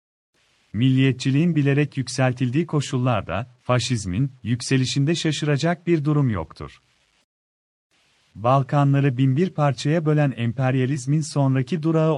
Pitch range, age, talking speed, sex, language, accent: 120-150 Hz, 40-59, 85 wpm, male, Turkish, native